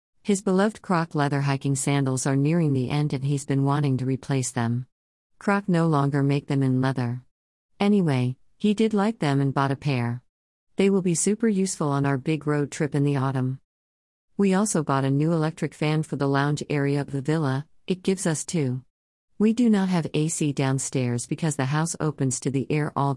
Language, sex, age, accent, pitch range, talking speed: English, female, 50-69, American, 130-165 Hz, 200 wpm